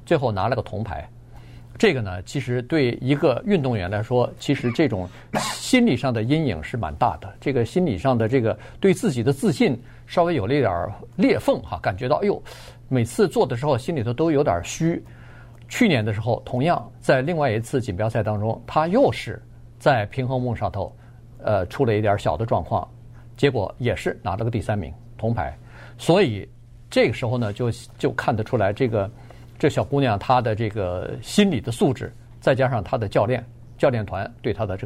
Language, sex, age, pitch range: Chinese, male, 50-69, 110-135 Hz